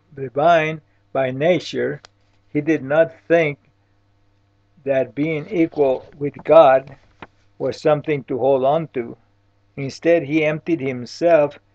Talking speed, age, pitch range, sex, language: 110 wpm, 60-79, 100-155 Hz, male, English